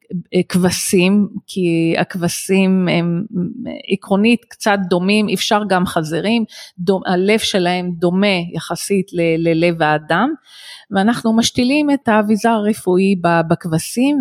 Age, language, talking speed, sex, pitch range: 30-49, Hebrew, 105 wpm, female, 170-215 Hz